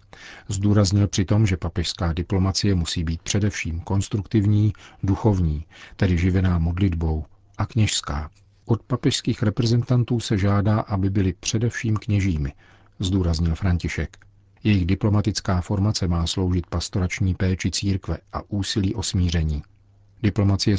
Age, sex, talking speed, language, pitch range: 40-59, male, 115 wpm, Czech, 90-105 Hz